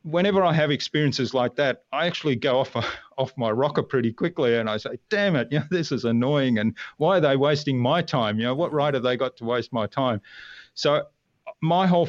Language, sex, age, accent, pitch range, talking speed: English, male, 40-59, Australian, 110-135 Hz, 235 wpm